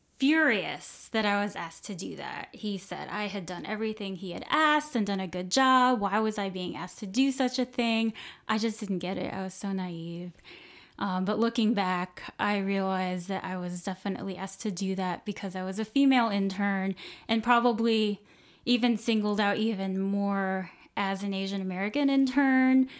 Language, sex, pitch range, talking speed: English, female, 190-230 Hz, 190 wpm